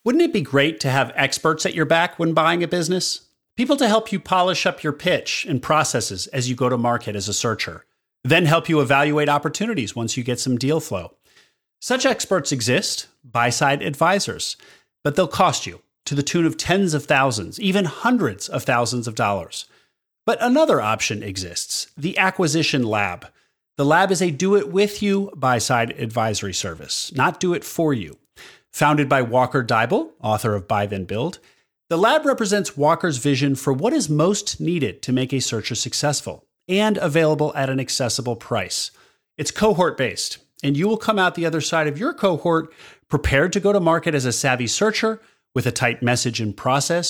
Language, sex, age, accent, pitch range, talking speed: English, male, 30-49, American, 125-185 Hz, 180 wpm